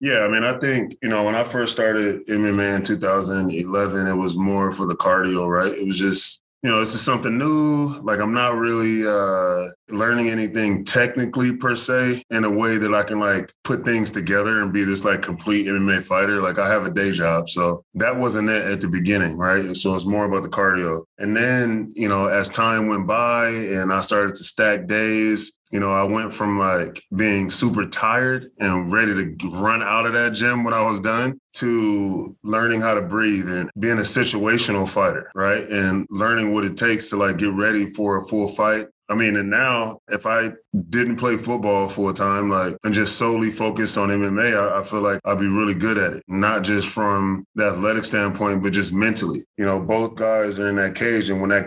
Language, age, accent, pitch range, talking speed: English, 20-39, American, 95-110 Hz, 215 wpm